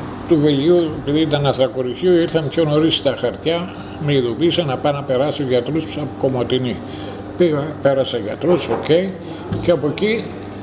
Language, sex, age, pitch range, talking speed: Greek, male, 50-69, 120-155 Hz, 160 wpm